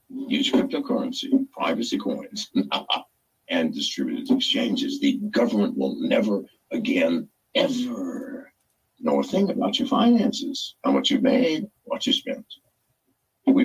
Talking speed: 120 wpm